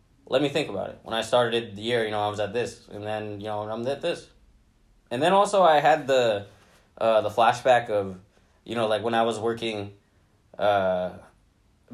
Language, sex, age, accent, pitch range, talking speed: English, male, 20-39, American, 100-115 Hz, 205 wpm